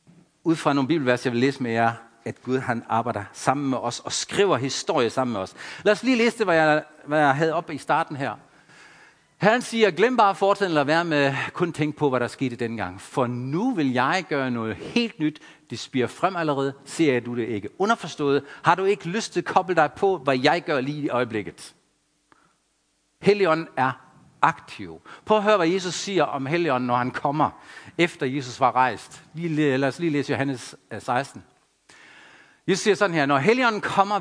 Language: Danish